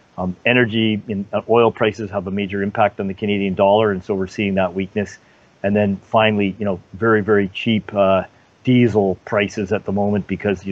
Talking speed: 200 wpm